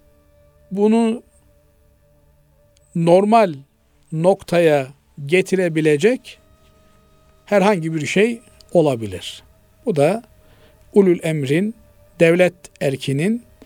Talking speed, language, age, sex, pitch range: 60 wpm, Turkish, 50-69, male, 135-180 Hz